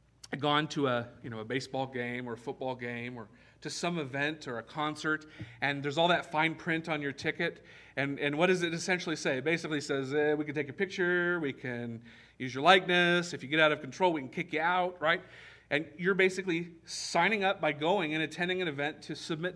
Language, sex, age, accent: English, male, 40-59, American